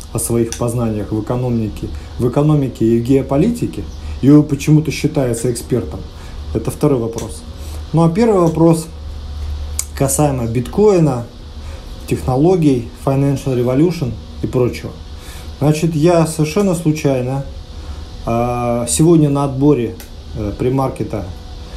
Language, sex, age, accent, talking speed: Russian, male, 30-49, native, 100 wpm